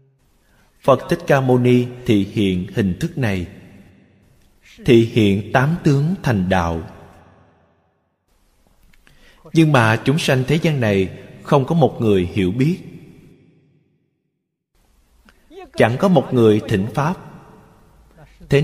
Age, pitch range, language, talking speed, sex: 20-39, 100-135 Hz, Vietnamese, 115 wpm, male